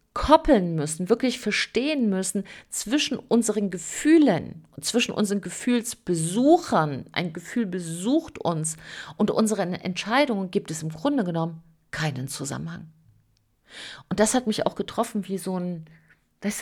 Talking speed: 130 wpm